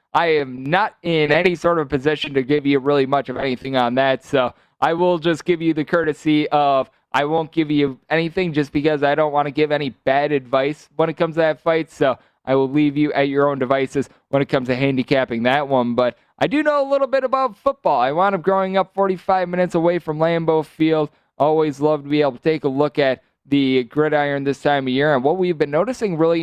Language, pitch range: English, 135-165 Hz